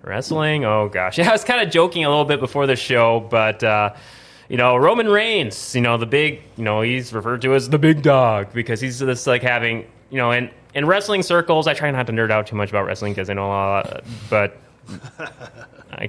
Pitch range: 110-135 Hz